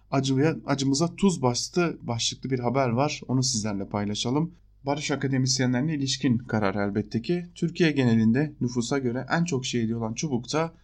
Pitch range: 110-145 Hz